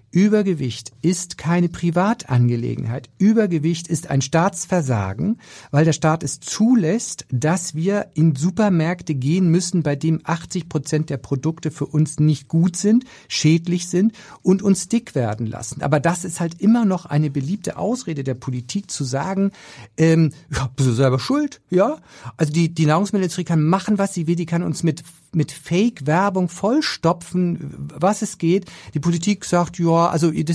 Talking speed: 160 wpm